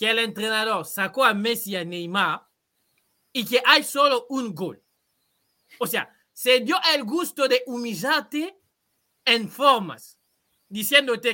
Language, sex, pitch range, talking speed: Spanish, male, 175-250 Hz, 130 wpm